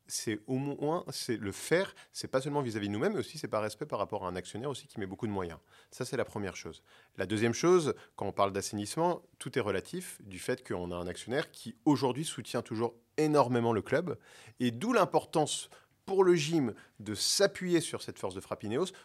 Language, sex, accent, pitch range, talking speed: French, male, French, 110-165 Hz, 215 wpm